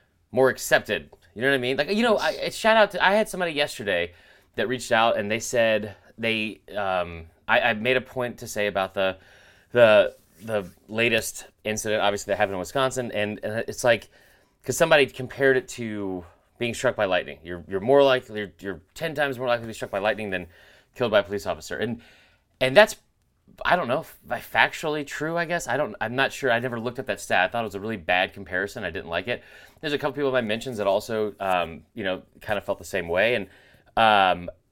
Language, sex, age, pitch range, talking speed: English, male, 30-49, 100-135 Hz, 230 wpm